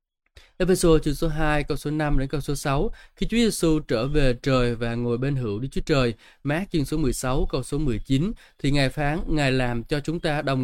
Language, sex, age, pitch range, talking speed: Vietnamese, male, 20-39, 125-160 Hz, 225 wpm